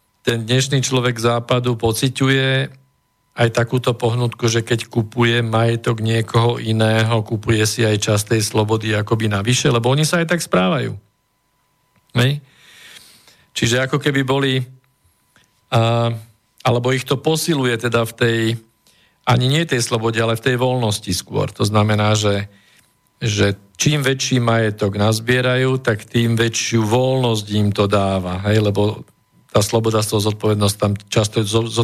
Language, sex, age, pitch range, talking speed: Slovak, male, 50-69, 110-130 Hz, 135 wpm